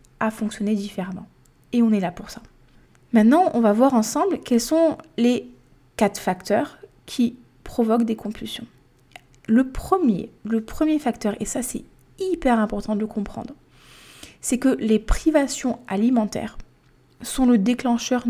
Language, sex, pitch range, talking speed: French, female, 200-240 Hz, 145 wpm